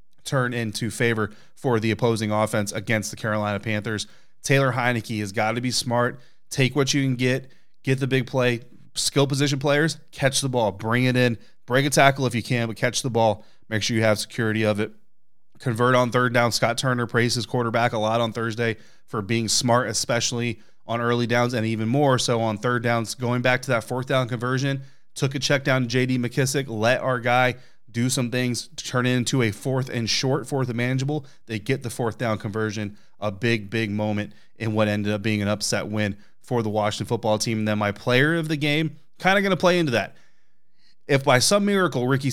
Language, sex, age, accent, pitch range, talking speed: English, male, 30-49, American, 110-130 Hz, 215 wpm